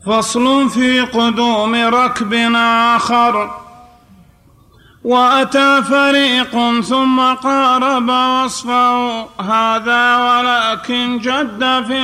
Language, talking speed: Arabic, 70 wpm